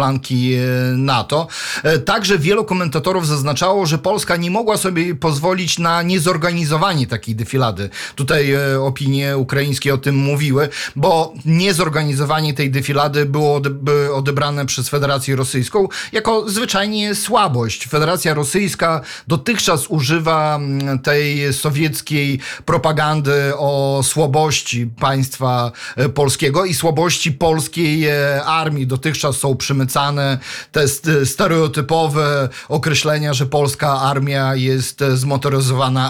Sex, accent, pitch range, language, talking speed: male, native, 140-165 Hz, Polish, 95 wpm